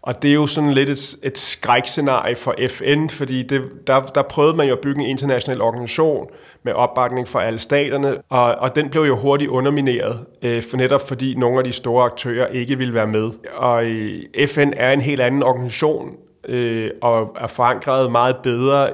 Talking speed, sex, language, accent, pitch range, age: 185 wpm, male, Danish, native, 120-140 Hz, 30-49